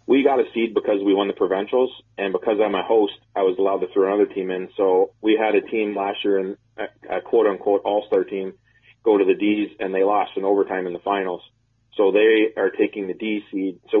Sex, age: male, 30-49